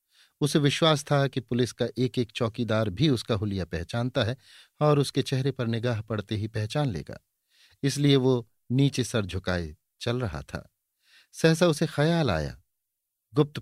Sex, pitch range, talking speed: male, 100-135 Hz, 160 wpm